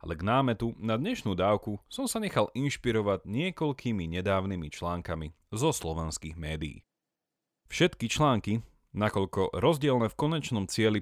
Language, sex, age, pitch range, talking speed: Slovak, male, 30-49, 90-140 Hz, 125 wpm